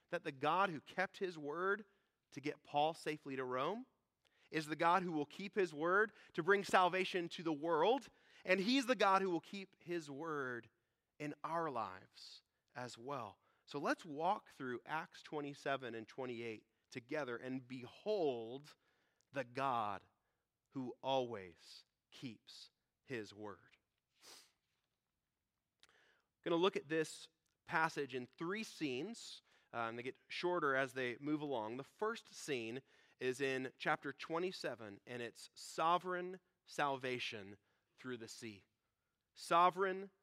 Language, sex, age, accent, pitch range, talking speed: English, male, 30-49, American, 130-180 Hz, 140 wpm